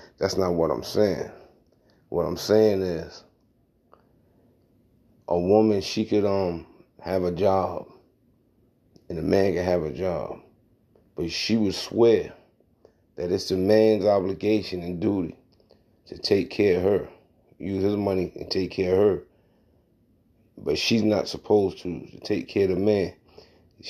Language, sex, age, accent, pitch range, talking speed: English, male, 30-49, American, 90-110 Hz, 150 wpm